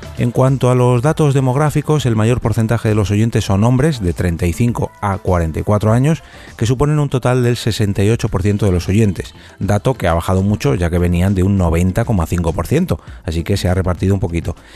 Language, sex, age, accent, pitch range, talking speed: Spanish, male, 30-49, Spanish, 90-120 Hz, 185 wpm